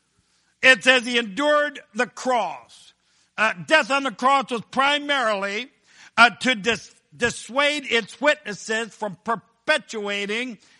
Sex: male